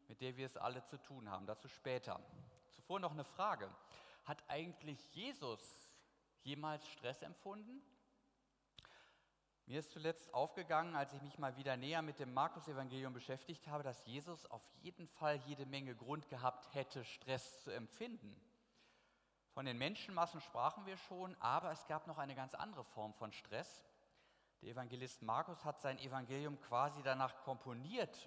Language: German